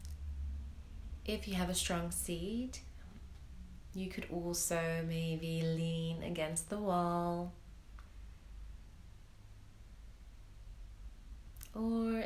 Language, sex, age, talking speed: English, female, 30-49, 75 wpm